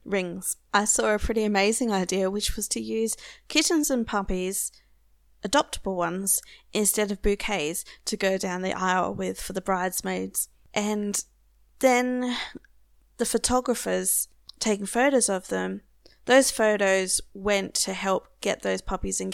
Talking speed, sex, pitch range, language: 140 wpm, female, 175-225 Hz, English